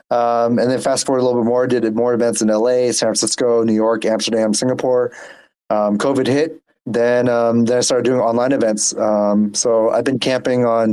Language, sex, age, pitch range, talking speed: English, male, 20-39, 110-120 Hz, 210 wpm